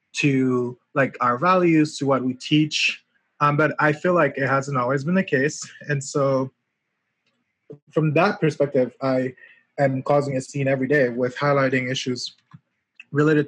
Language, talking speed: English, 155 wpm